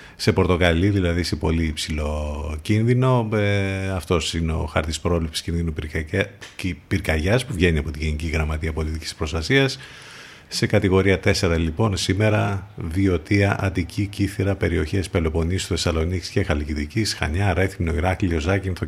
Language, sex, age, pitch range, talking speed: Greek, male, 50-69, 80-105 Hz, 125 wpm